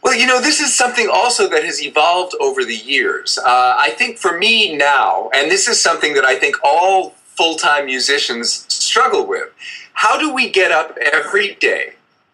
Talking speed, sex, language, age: 185 wpm, male, English, 30-49